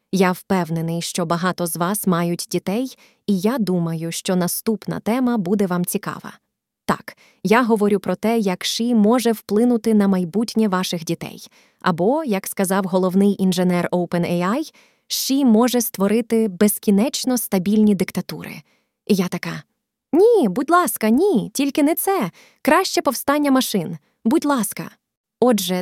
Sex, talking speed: female, 135 wpm